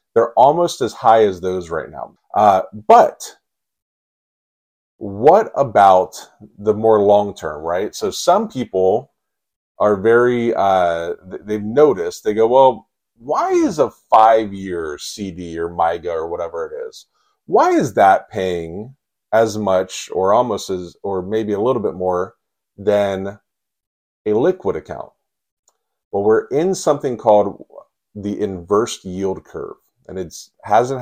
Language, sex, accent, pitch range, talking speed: English, male, American, 95-120 Hz, 135 wpm